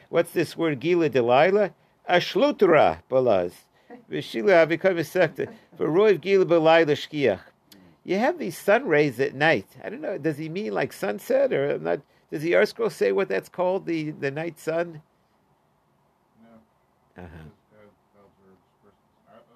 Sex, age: male, 50-69